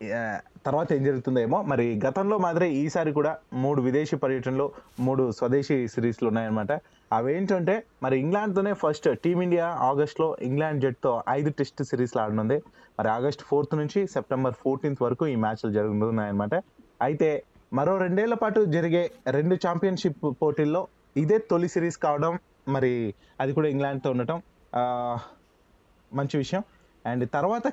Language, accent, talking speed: Telugu, native, 130 wpm